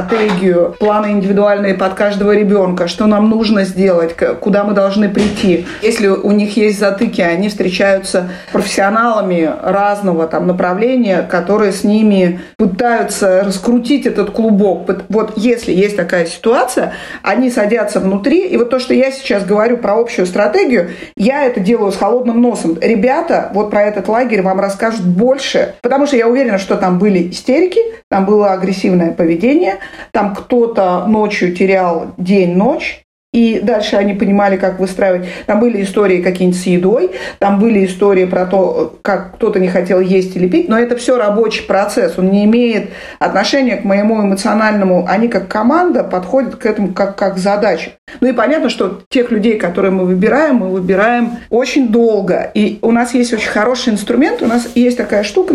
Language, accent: Russian, native